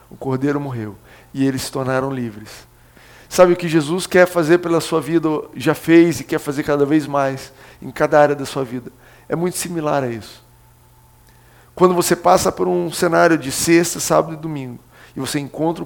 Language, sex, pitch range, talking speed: Portuguese, male, 130-180 Hz, 190 wpm